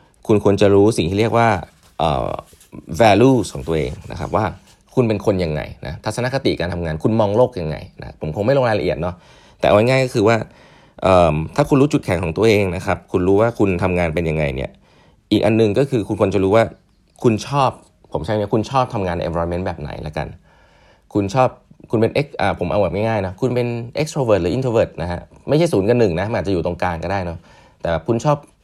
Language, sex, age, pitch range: English, male, 20-39, 90-120 Hz